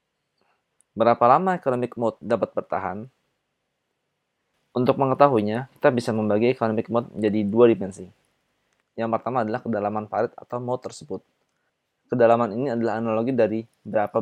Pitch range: 105-125 Hz